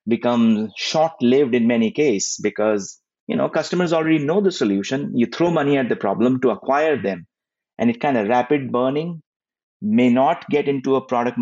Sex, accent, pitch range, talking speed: male, Indian, 120-185 Hz, 180 wpm